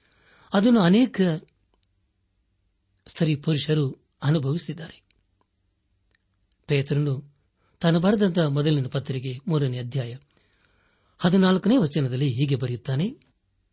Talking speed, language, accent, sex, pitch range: 60 wpm, Kannada, native, male, 110-165 Hz